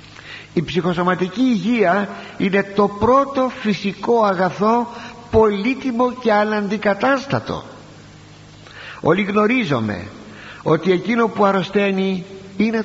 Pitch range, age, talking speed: 135-220 Hz, 60-79, 85 wpm